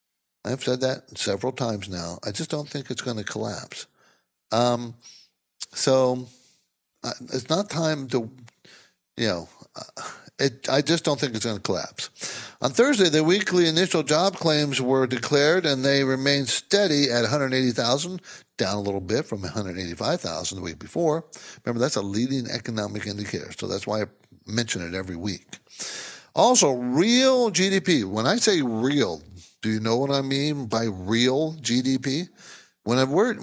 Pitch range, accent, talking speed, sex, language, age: 115-150 Hz, American, 160 wpm, male, English, 60-79